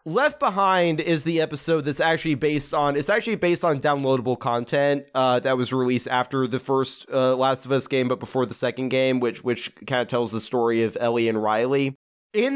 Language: English